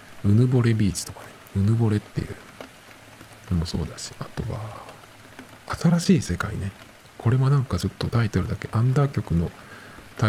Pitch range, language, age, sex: 90-120 Hz, Japanese, 50-69, male